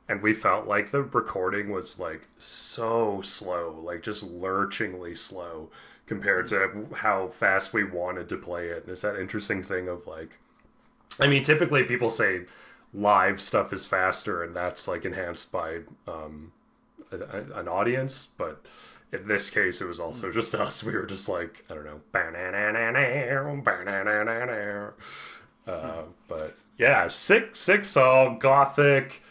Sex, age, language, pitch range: male, 30-49, English, 90-125 Hz